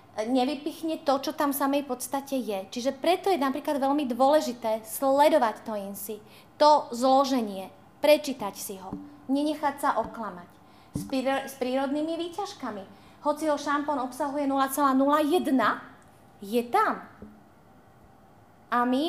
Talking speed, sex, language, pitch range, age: 115 wpm, female, Czech, 225-295 Hz, 30-49